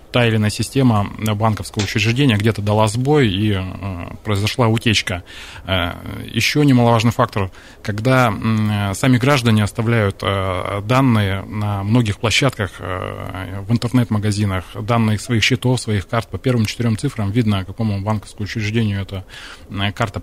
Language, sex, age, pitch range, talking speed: Russian, male, 20-39, 100-115 Hz, 135 wpm